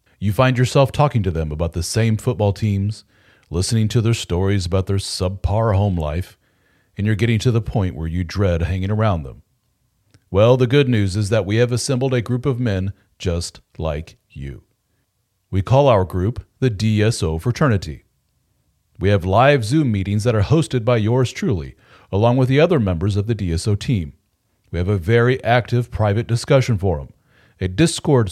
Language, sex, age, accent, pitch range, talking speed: English, male, 40-59, American, 95-125 Hz, 180 wpm